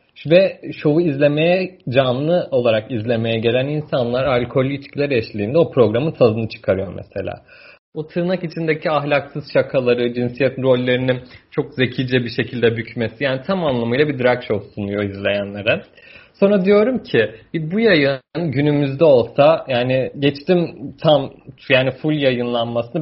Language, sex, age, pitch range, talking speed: Turkish, male, 30-49, 120-155 Hz, 130 wpm